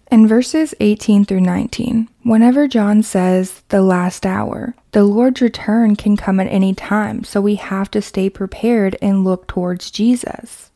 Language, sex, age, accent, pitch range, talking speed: English, female, 20-39, American, 195-225 Hz, 160 wpm